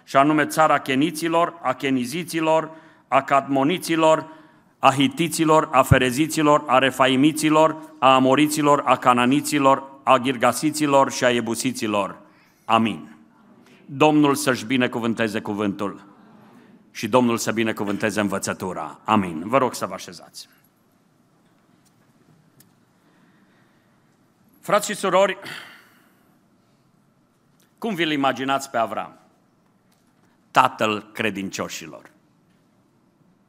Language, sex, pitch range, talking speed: Romanian, male, 125-160 Hz, 90 wpm